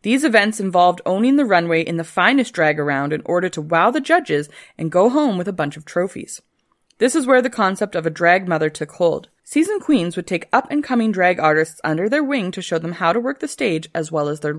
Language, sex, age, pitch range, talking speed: English, female, 20-39, 160-220 Hz, 240 wpm